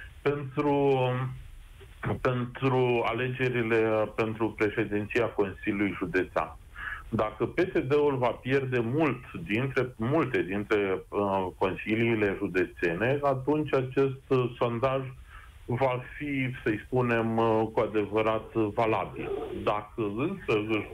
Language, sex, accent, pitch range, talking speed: Romanian, male, native, 110-135 Hz, 95 wpm